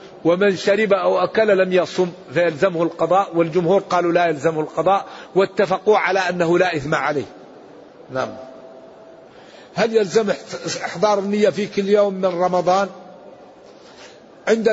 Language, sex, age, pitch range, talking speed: Arabic, male, 50-69, 180-205 Hz, 120 wpm